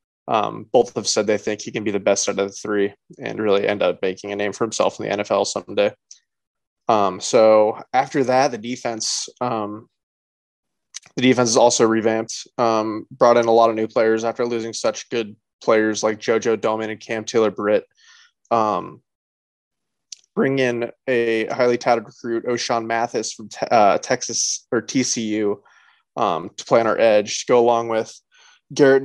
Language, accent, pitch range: English, American, 105-120 Hz